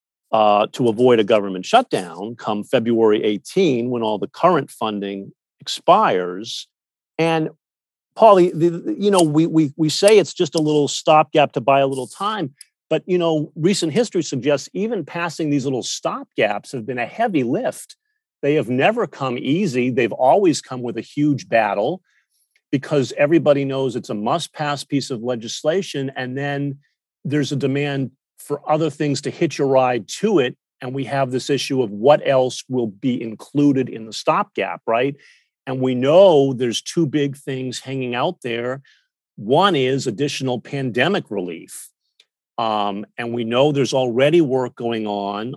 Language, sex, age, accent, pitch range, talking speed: English, male, 50-69, American, 120-145 Hz, 160 wpm